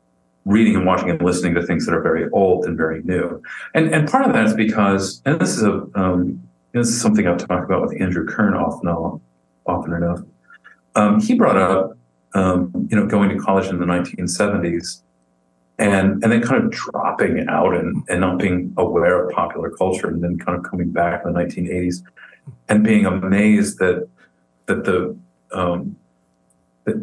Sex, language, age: male, English, 40-59